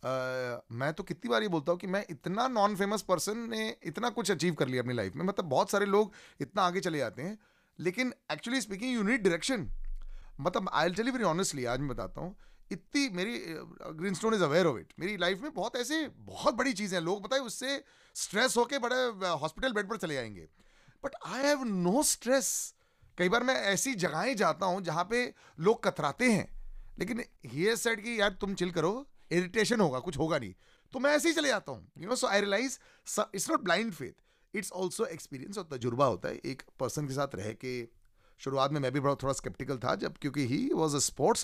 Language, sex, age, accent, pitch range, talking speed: Hindi, male, 30-49, native, 145-230 Hz, 160 wpm